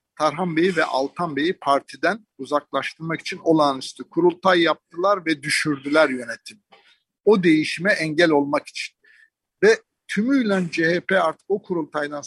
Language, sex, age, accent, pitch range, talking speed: Turkish, male, 50-69, native, 145-195 Hz, 120 wpm